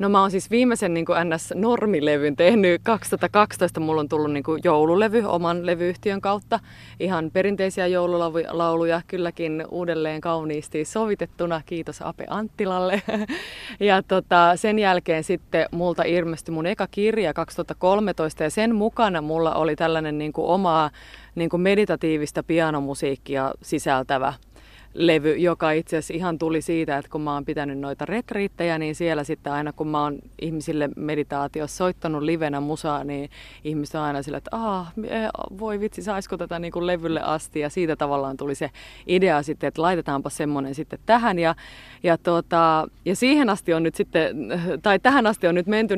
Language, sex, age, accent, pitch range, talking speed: Finnish, female, 20-39, native, 155-185 Hz, 155 wpm